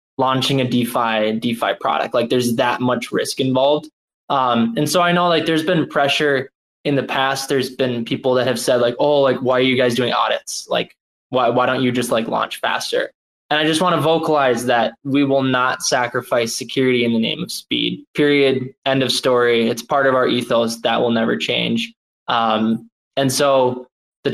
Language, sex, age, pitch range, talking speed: English, male, 20-39, 120-140 Hz, 200 wpm